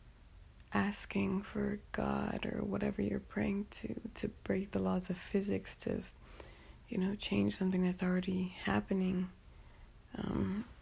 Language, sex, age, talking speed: English, female, 20-39, 130 wpm